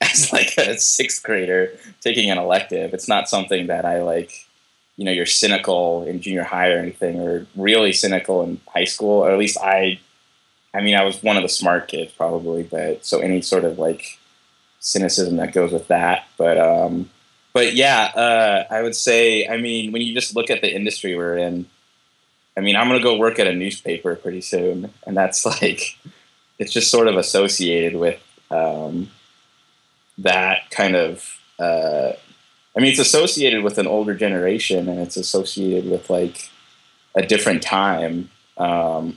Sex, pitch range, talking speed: male, 85-110 Hz, 175 wpm